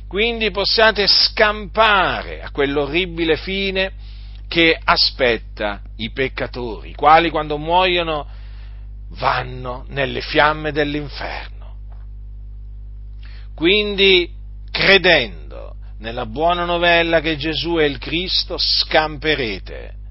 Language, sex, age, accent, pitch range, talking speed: Italian, male, 40-59, native, 105-170 Hz, 85 wpm